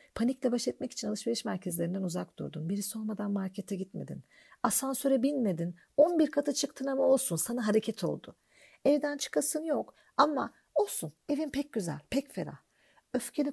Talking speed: 145 wpm